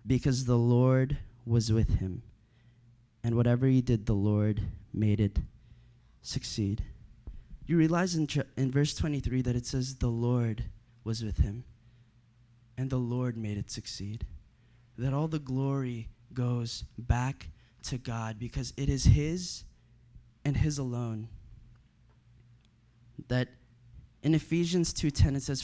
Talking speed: 130 wpm